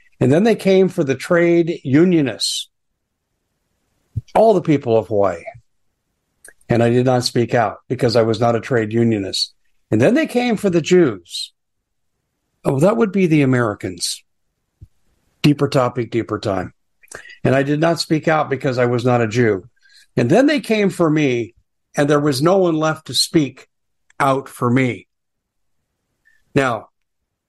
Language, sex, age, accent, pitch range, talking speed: English, male, 60-79, American, 135-170 Hz, 160 wpm